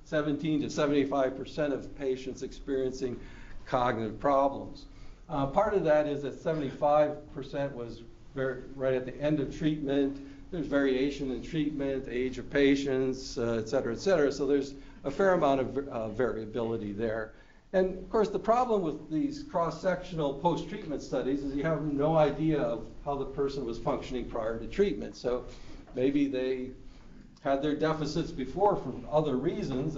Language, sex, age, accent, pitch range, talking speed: English, male, 60-79, American, 125-150 Hz, 160 wpm